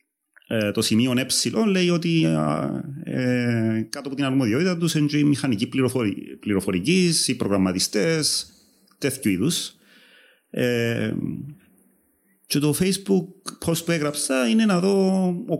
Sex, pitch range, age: male, 120-155 Hz, 30-49